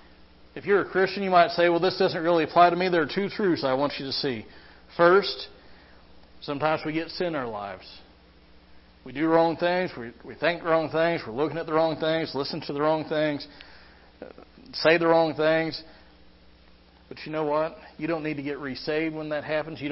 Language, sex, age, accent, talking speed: English, male, 40-59, American, 210 wpm